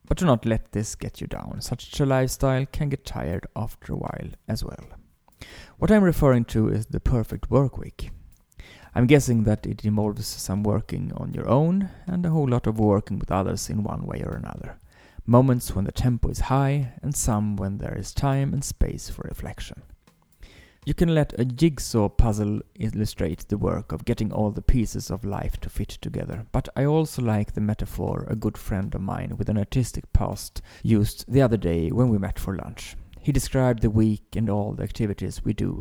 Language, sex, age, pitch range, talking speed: English, male, 30-49, 105-135 Hz, 200 wpm